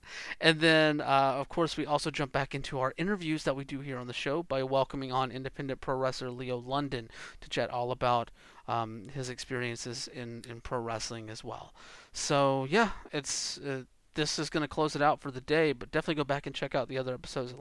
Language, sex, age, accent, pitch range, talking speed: English, male, 30-49, American, 125-160 Hz, 220 wpm